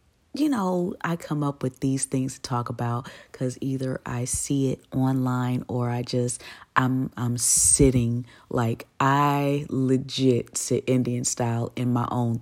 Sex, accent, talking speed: female, American, 155 wpm